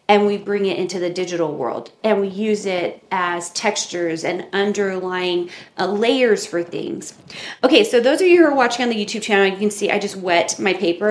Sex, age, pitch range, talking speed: female, 30-49, 175-230 Hz, 215 wpm